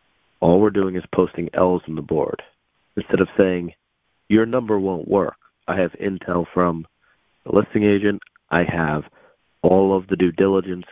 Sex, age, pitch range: male, 40-59, 85-100 Hz